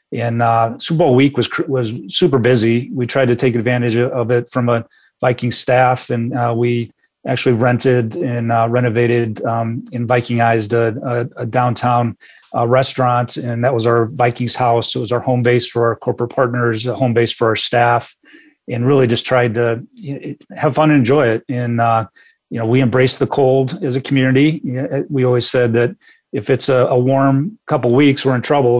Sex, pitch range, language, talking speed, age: male, 120-130 Hz, English, 200 wpm, 40-59